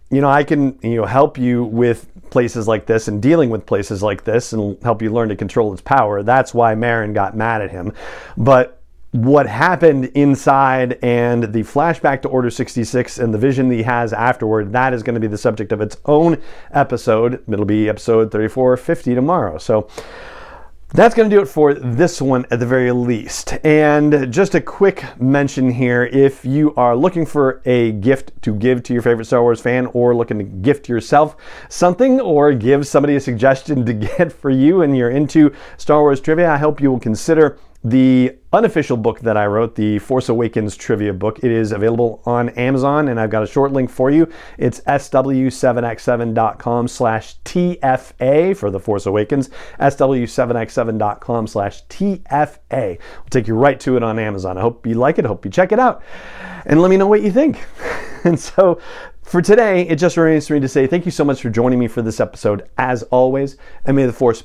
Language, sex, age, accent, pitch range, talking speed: English, male, 40-59, American, 115-145 Hz, 195 wpm